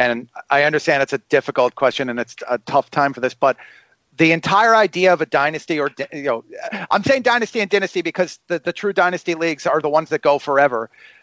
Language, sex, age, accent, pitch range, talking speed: English, male, 40-59, American, 140-185 Hz, 220 wpm